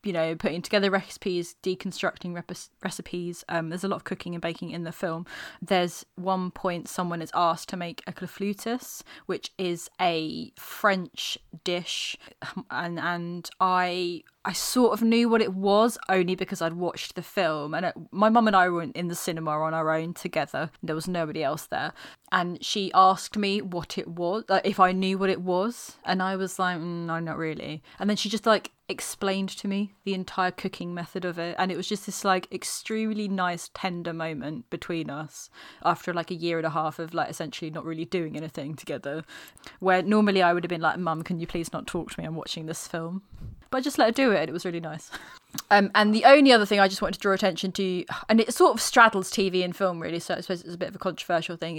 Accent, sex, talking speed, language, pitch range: British, female, 225 wpm, English, 170-195 Hz